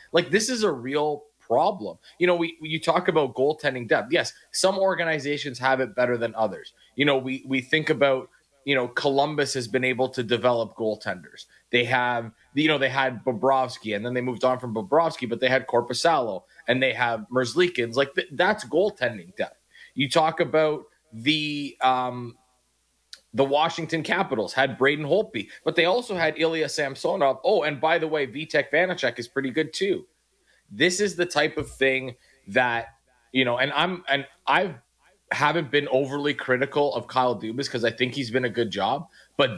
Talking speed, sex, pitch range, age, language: 185 wpm, male, 125-155 Hz, 30-49, English